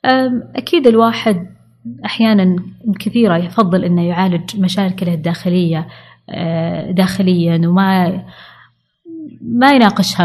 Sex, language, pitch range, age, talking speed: female, Arabic, 180-225 Hz, 20-39, 75 wpm